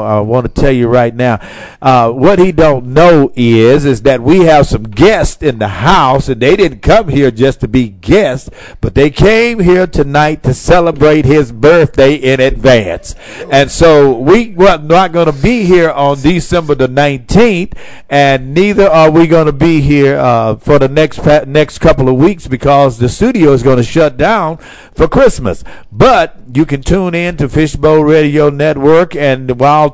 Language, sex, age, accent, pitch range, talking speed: English, male, 50-69, American, 130-160 Hz, 185 wpm